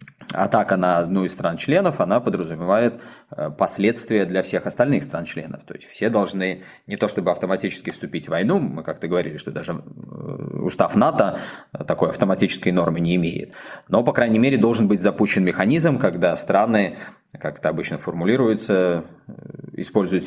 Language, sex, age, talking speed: Russian, male, 20-39, 150 wpm